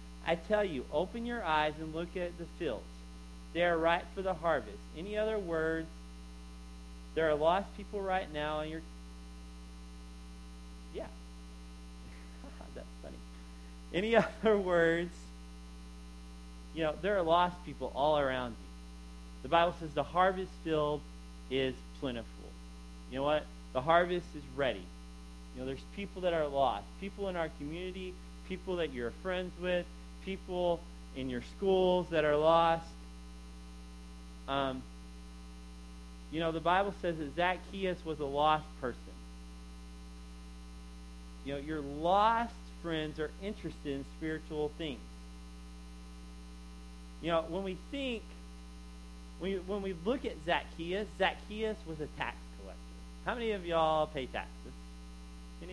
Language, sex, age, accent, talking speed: English, male, 30-49, American, 135 wpm